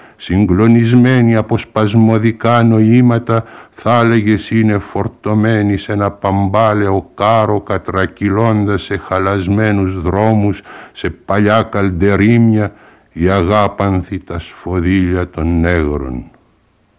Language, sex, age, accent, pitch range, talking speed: Greek, male, 60-79, American, 90-105 Hz, 85 wpm